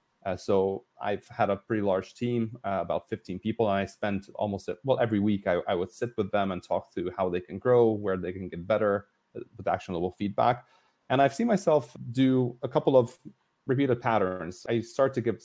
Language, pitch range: English, 100-125 Hz